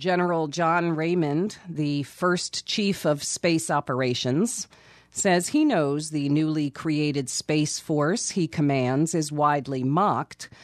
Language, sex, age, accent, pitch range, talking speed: English, female, 40-59, American, 140-180 Hz, 125 wpm